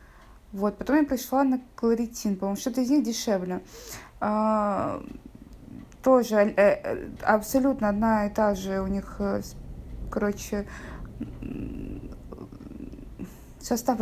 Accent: native